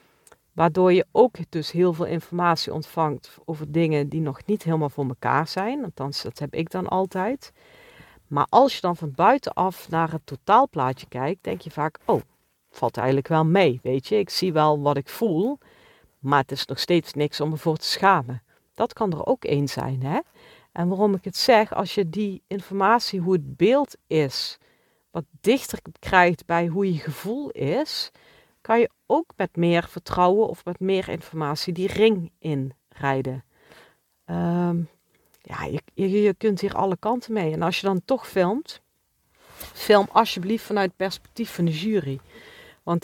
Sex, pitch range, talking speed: female, 155-200 Hz, 175 wpm